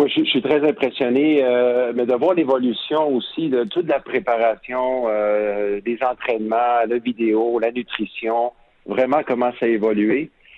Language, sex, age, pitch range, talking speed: French, male, 50-69, 110-130 Hz, 145 wpm